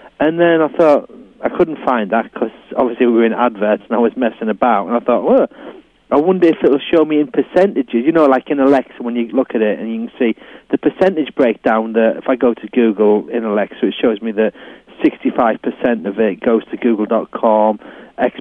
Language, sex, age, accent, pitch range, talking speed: English, male, 40-59, British, 110-155 Hz, 225 wpm